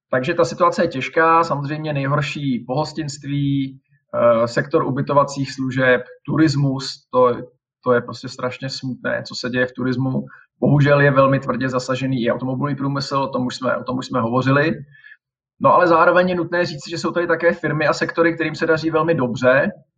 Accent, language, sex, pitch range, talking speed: native, Czech, male, 125-150 Hz, 170 wpm